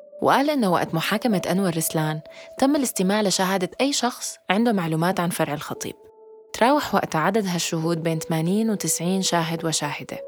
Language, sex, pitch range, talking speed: Arabic, female, 165-215 Hz, 145 wpm